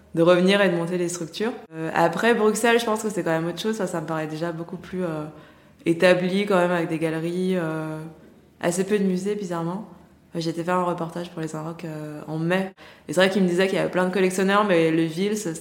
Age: 20-39